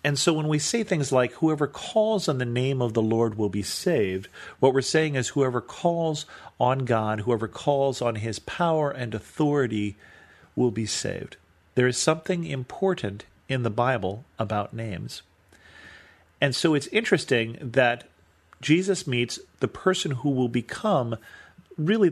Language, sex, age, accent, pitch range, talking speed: English, male, 40-59, American, 110-150 Hz, 155 wpm